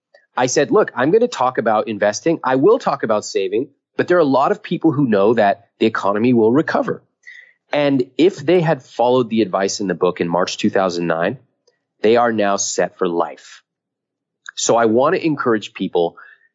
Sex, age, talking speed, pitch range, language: male, 30-49, 190 wpm, 110-160 Hz, English